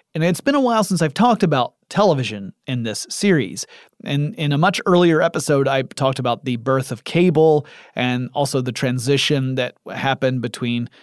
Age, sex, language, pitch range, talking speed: 30-49, male, English, 125-160 Hz, 180 wpm